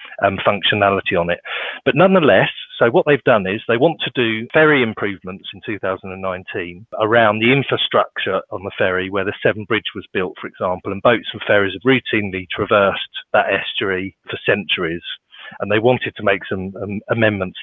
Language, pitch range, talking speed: English, 100-130 Hz, 175 wpm